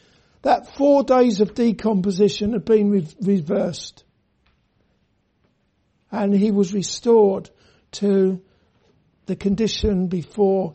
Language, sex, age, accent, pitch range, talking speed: English, male, 60-79, British, 195-230 Hz, 95 wpm